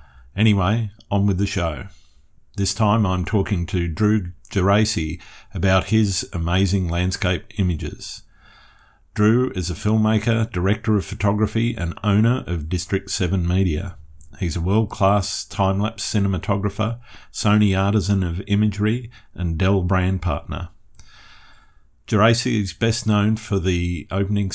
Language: English